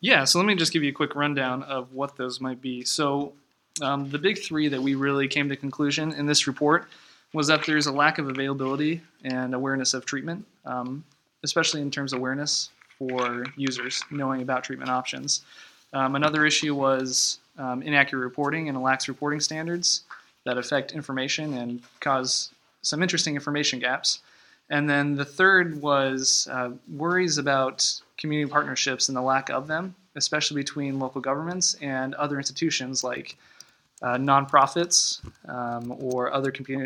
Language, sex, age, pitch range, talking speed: English, male, 20-39, 135-150 Hz, 165 wpm